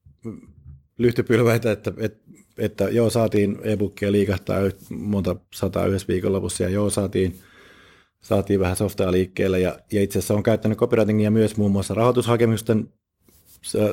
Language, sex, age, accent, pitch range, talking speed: Finnish, male, 30-49, native, 95-110 Hz, 135 wpm